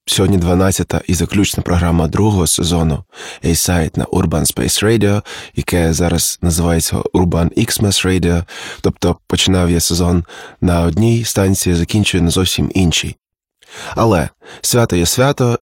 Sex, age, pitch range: male, 20-39, 85-105 Hz